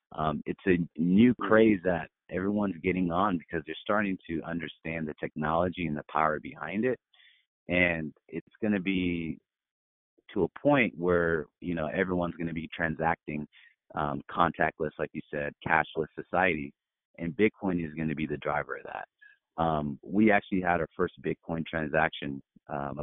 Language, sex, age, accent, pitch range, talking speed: English, male, 30-49, American, 75-90 Hz, 165 wpm